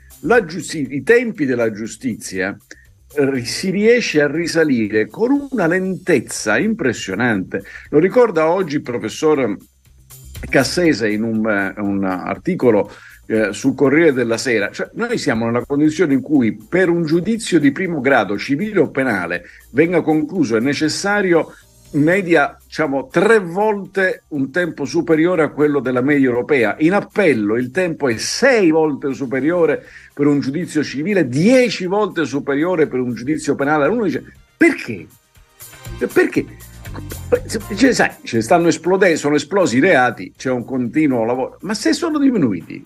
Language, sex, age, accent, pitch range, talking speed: Italian, male, 50-69, native, 125-190 Hz, 140 wpm